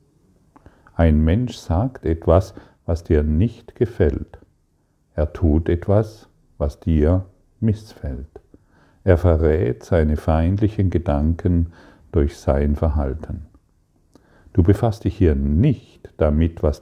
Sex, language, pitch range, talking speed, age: male, German, 80-95 Hz, 105 wpm, 50-69